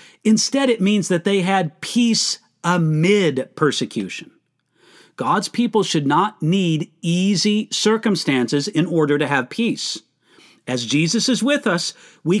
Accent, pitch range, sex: American, 160-220 Hz, male